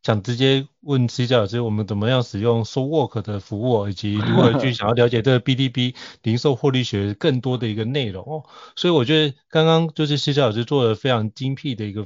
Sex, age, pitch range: male, 30-49, 110-145 Hz